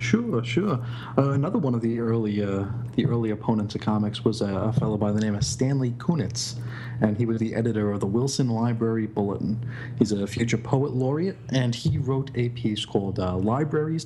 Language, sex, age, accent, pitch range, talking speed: English, male, 40-59, American, 110-130 Hz, 200 wpm